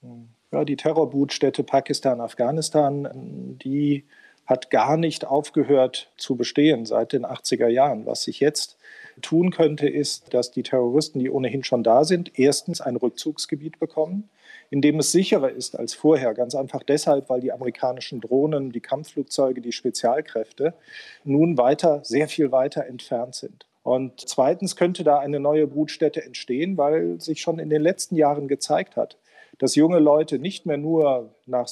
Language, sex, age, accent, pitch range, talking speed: German, male, 40-59, German, 130-160 Hz, 155 wpm